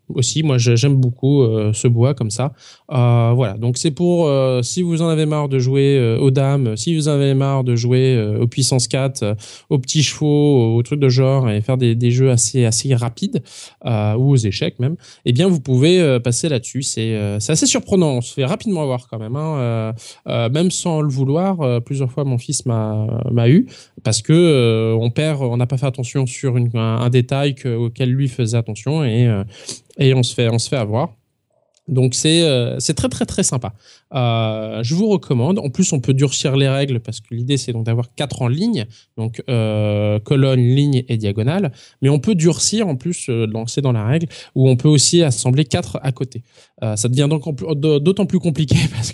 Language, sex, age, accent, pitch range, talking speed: French, male, 20-39, French, 120-150 Hz, 220 wpm